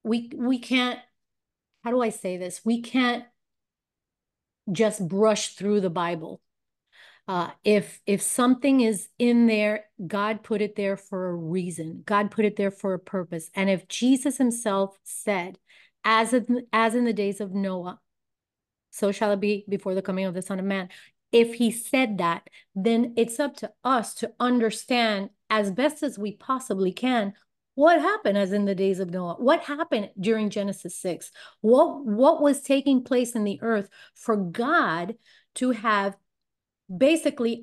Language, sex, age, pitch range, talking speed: English, female, 30-49, 200-245 Hz, 165 wpm